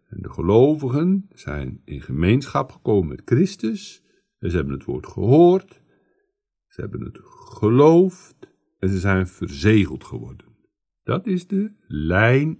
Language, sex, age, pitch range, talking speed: Dutch, male, 60-79, 85-125 Hz, 135 wpm